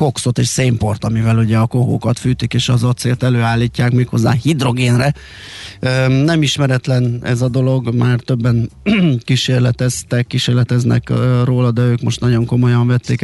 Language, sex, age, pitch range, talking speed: Hungarian, male, 20-39, 115-135 Hz, 135 wpm